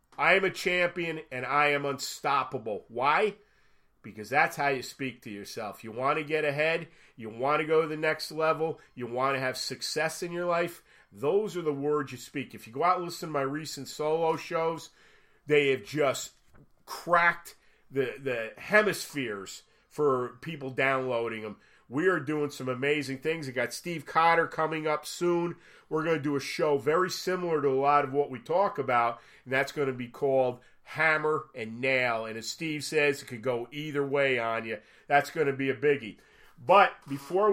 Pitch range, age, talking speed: 130-160 Hz, 40-59, 195 wpm